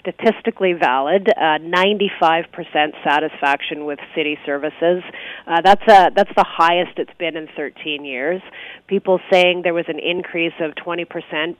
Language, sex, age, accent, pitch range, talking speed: English, female, 30-49, American, 160-185 Hz, 140 wpm